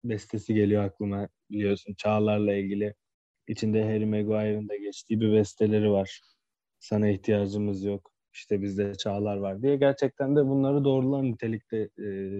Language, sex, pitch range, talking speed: Turkish, male, 105-125 Hz, 135 wpm